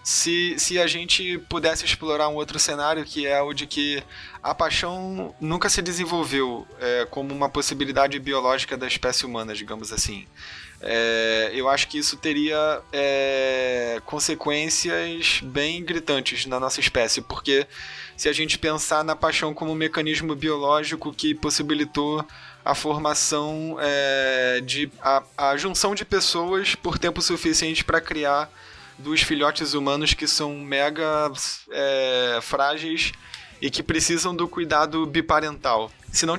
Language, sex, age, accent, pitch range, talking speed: Portuguese, male, 20-39, Brazilian, 140-165 Hz, 140 wpm